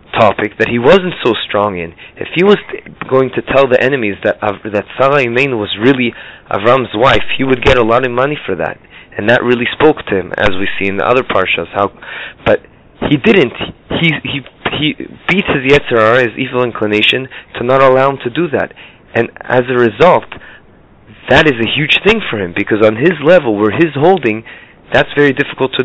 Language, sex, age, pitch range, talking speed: English, male, 30-49, 105-140 Hz, 205 wpm